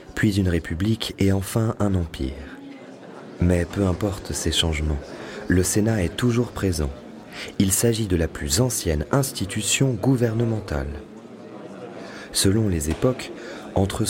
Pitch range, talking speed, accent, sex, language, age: 80-110 Hz, 125 wpm, French, male, French, 30-49